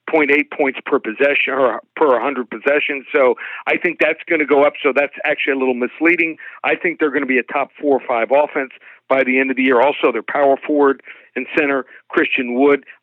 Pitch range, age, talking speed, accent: 130-155 Hz, 50-69, 230 wpm, American